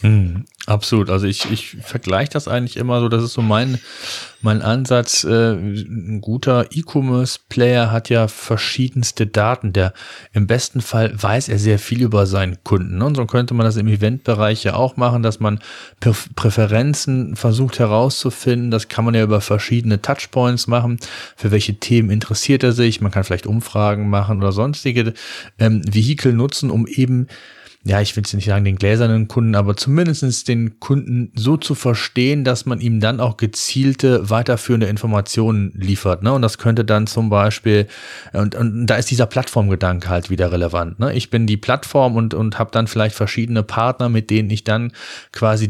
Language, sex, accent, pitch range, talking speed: German, male, German, 105-120 Hz, 170 wpm